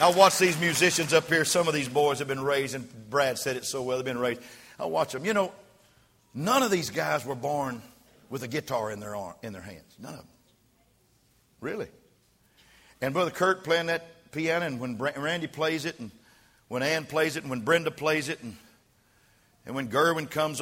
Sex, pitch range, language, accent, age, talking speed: male, 135-170 Hz, English, American, 50-69, 210 wpm